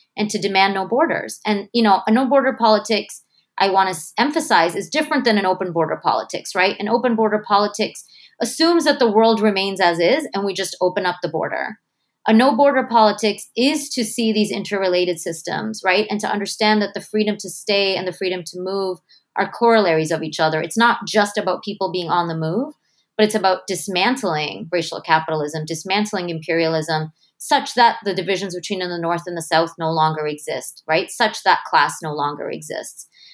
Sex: female